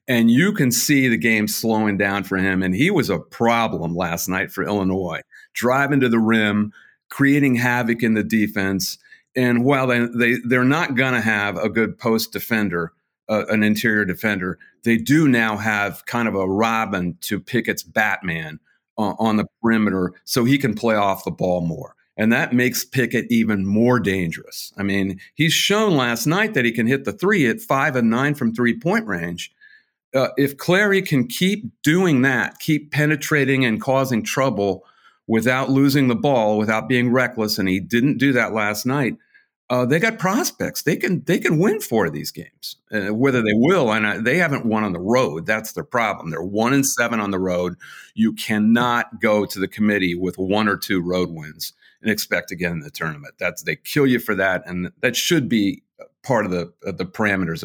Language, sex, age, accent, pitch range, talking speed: English, male, 50-69, American, 100-135 Hz, 195 wpm